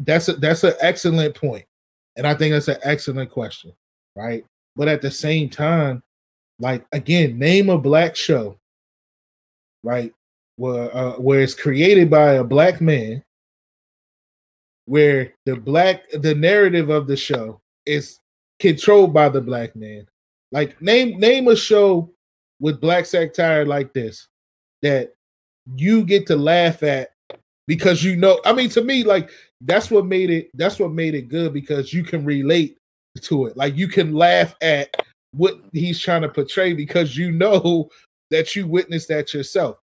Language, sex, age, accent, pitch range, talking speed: English, male, 20-39, American, 135-170 Hz, 160 wpm